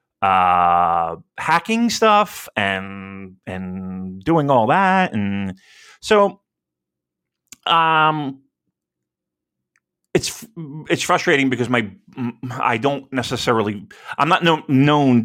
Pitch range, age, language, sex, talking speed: 95-145 Hz, 30-49, English, male, 90 wpm